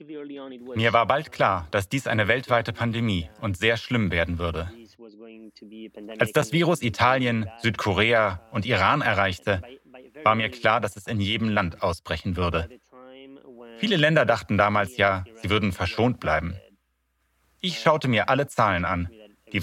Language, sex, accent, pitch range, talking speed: German, male, German, 100-125 Hz, 145 wpm